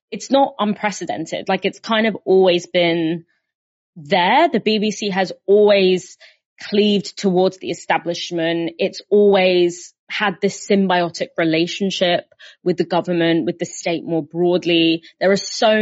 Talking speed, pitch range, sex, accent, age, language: 135 wpm, 175-205 Hz, female, British, 20-39, English